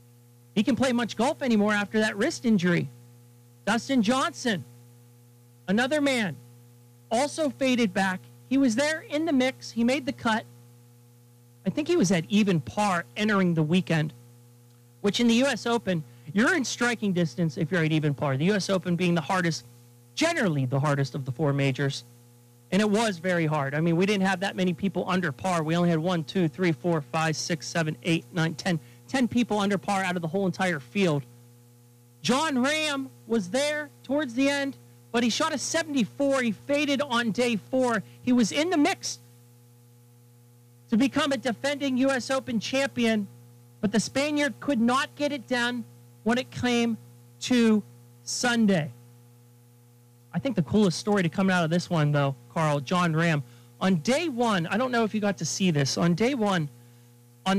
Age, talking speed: 40-59, 180 wpm